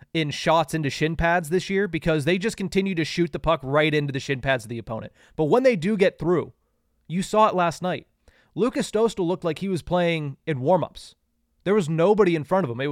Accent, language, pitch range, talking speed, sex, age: American, English, 150-195 Hz, 235 wpm, male, 30-49